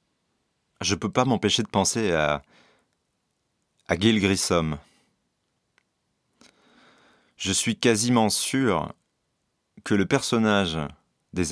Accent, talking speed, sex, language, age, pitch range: French, 100 wpm, male, French, 30-49, 90-110 Hz